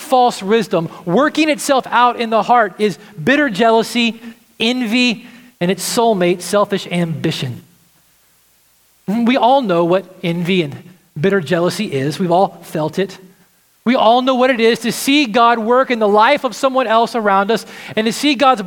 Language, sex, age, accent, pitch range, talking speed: English, male, 30-49, American, 190-250 Hz, 165 wpm